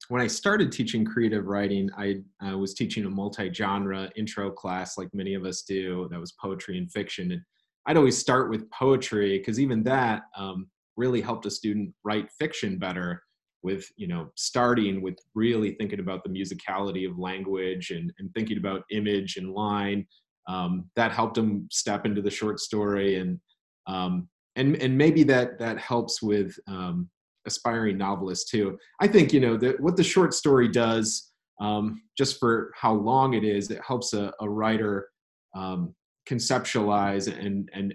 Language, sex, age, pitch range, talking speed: English, male, 30-49, 100-120 Hz, 170 wpm